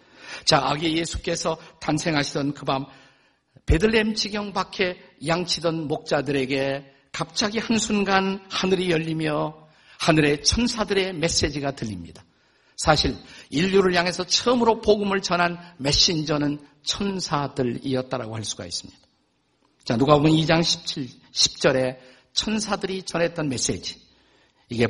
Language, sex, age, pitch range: Korean, male, 50-69, 130-185 Hz